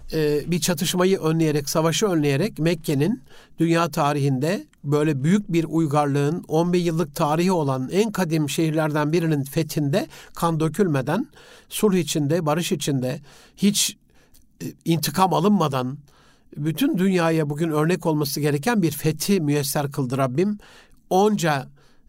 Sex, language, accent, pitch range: male, Turkish, native, 150-190 Hz